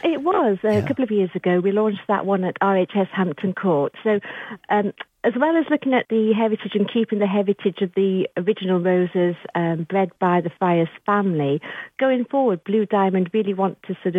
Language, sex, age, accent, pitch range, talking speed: English, female, 50-69, British, 180-215 Hz, 195 wpm